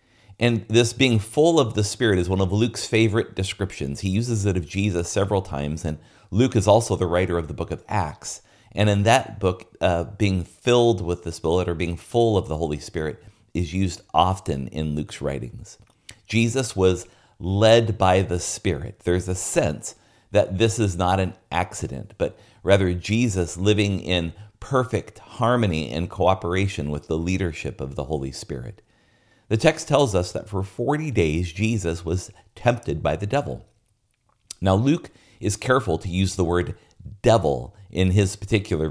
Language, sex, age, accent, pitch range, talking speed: English, male, 40-59, American, 85-110 Hz, 170 wpm